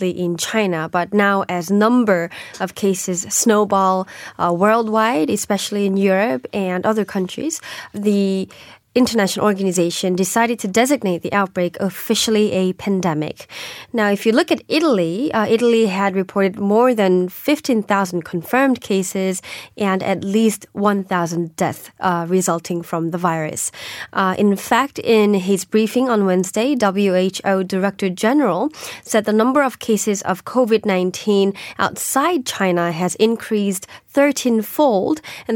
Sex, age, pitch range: female, 20-39, 185-225 Hz